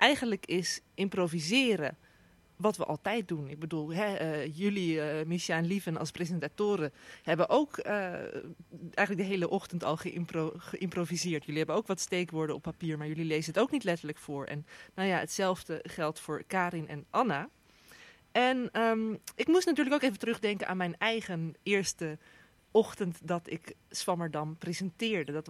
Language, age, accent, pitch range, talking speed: Dutch, 20-39, Dutch, 165-220 Hz, 165 wpm